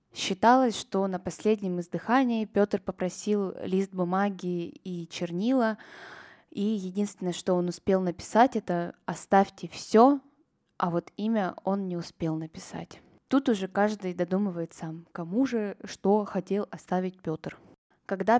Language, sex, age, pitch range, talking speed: Russian, female, 20-39, 175-215 Hz, 125 wpm